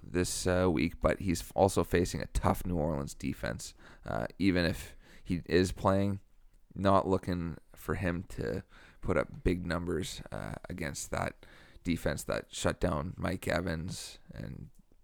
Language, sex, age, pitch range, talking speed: English, male, 30-49, 85-95 Hz, 150 wpm